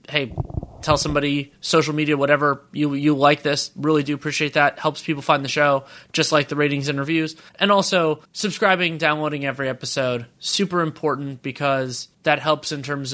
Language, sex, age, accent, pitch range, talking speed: English, male, 20-39, American, 145-170 Hz, 175 wpm